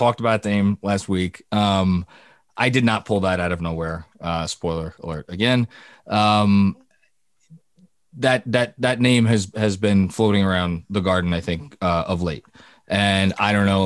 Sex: male